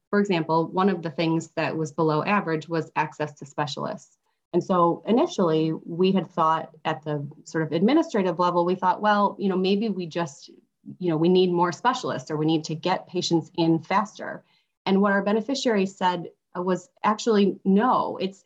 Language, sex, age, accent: English, female, 30-49, American